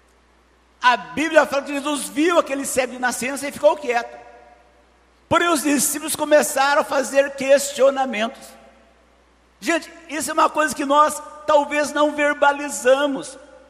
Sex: male